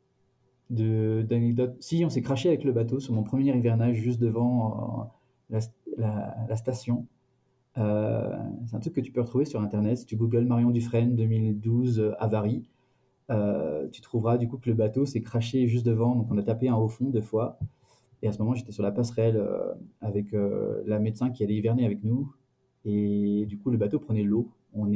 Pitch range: 110-125 Hz